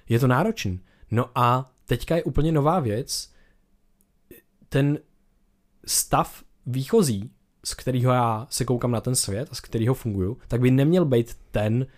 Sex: male